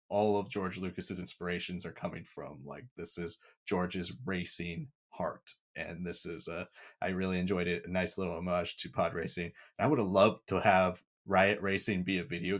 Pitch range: 90-105 Hz